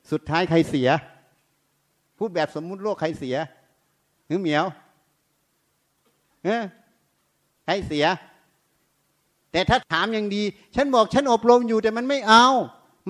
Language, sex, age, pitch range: Thai, male, 60-79, 135-190 Hz